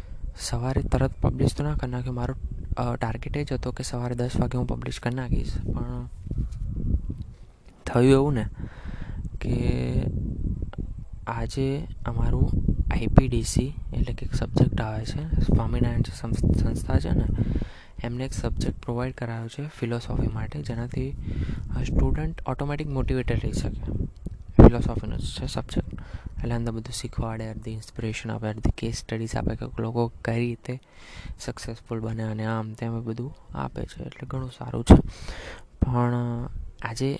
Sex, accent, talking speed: male, native, 90 wpm